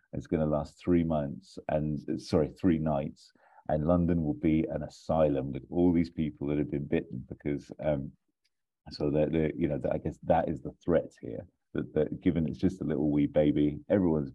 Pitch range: 75-80 Hz